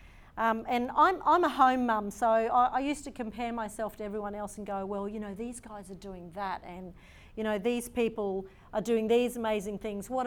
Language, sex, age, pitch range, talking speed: English, female, 40-59, 190-240 Hz, 220 wpm